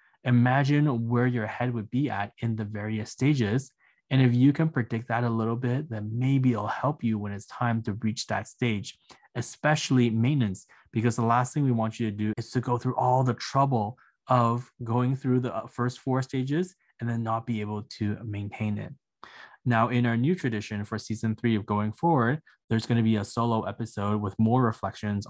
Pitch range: 105-125 Hz